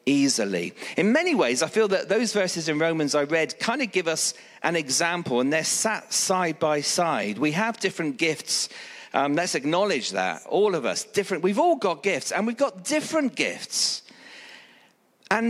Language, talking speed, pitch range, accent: English, 180 wpm, 170-235 Hz, British